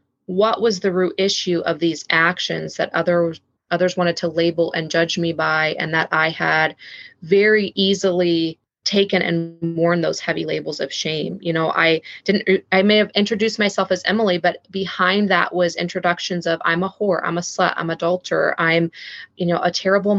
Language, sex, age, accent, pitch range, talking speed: English, female, 20-39, American, 170-195 Hz, 180 wpm